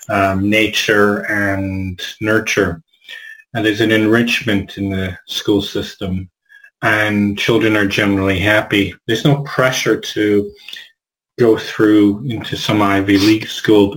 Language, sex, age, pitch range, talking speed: English, male, 30-49, 100-125 Hz, 120 wpm